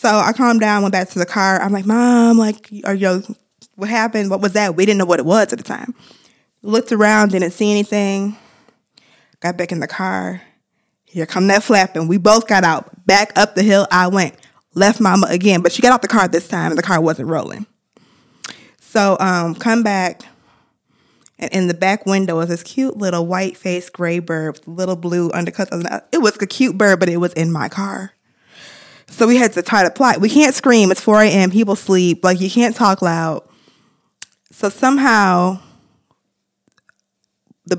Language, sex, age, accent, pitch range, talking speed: English, female, 20-39, American, 175-215 Hz, 195 wpm